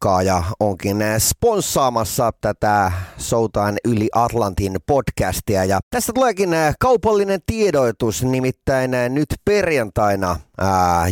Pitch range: 110-180 Hz